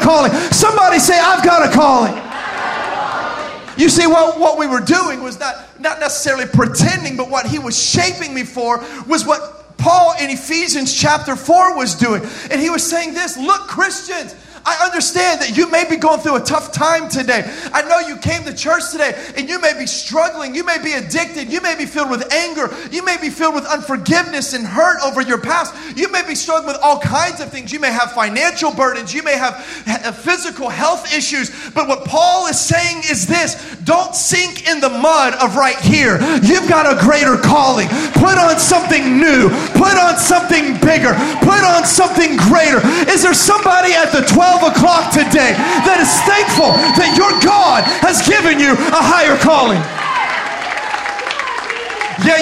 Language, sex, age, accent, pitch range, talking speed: English, male, 40-59, American, 280-350 Hz, 185 wpm